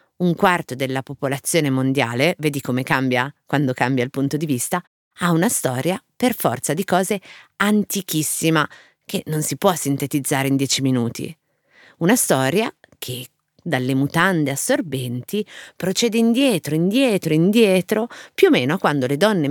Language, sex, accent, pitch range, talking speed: Italian, female, native, 135-195 Hz, 140 wpm